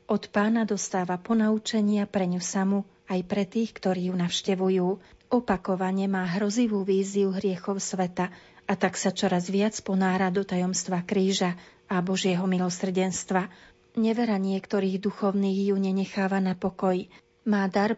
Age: 40-59